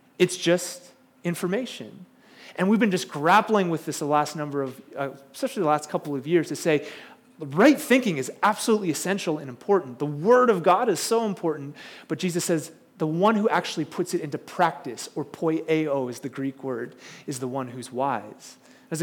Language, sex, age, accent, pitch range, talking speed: English, male, 30-49, American, 140-195 Hz, 190 wpm